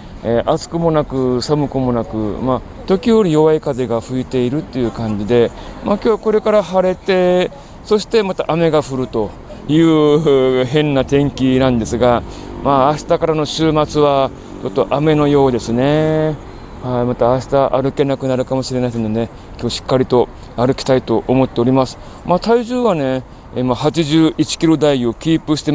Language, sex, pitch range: Japanese, male, 115-155 Hz